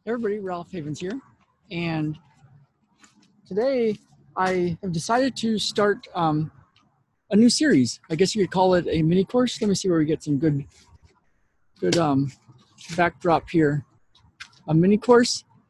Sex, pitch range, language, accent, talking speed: male, 155-200 Hz, English, American, 150 wpm